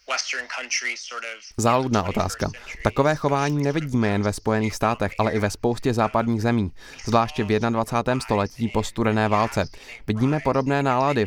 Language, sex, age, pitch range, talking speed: Czech, male, 20-39, 105-125 Hz, 130 wpm